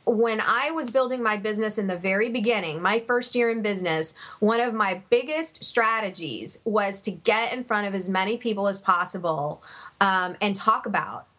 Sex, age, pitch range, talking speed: female, 30-49, 190-235 Hz, 185 wpm